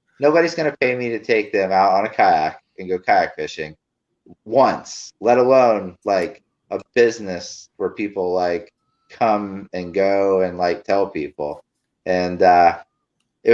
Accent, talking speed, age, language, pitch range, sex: American, 155 wpm, 30-49, English, 100-120 Hz, male